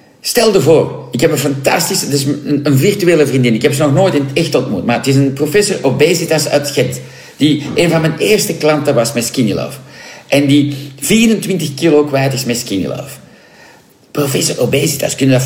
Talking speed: 205 wpm